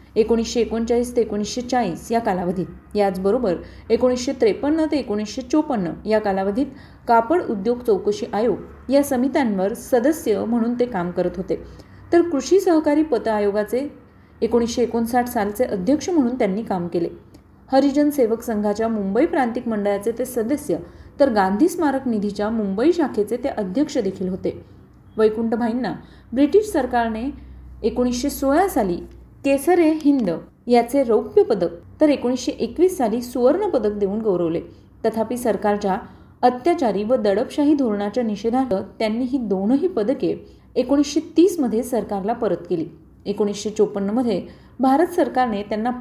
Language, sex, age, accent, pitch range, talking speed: Marathi, female, 30-49, native, 210-280 Hz, 105 wpm